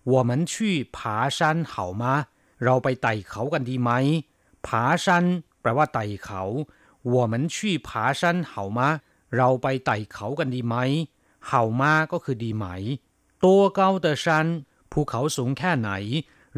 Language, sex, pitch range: Thai, male, 115-155 Hz